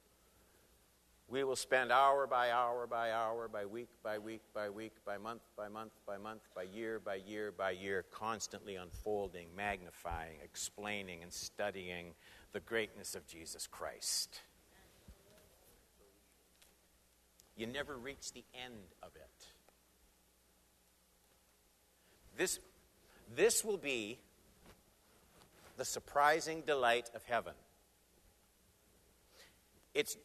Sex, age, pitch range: male, 60-79, 85-145 Hz